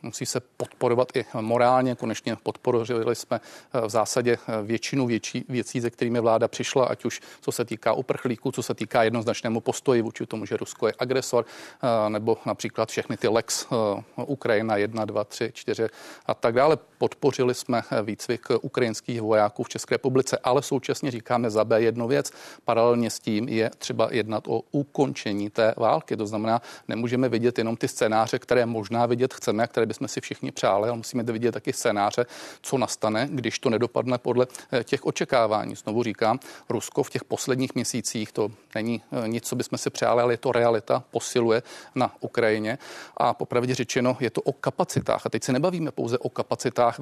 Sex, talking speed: male, 175 wpm